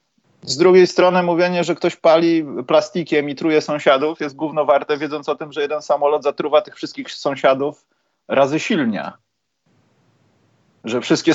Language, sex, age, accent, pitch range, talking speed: Polish, male, 30-49, native, 130-170 Hz, 150 wpm